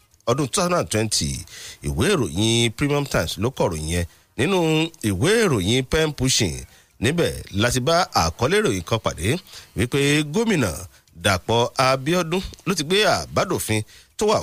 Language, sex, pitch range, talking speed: English, male, 95-135 Hz, 135 wpm